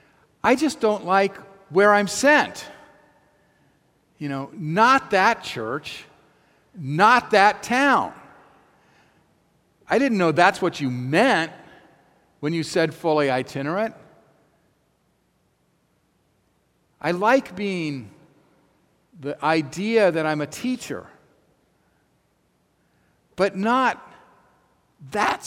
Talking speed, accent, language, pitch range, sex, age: 90 wpm, American, English, 145-205 Hz, male, 50-69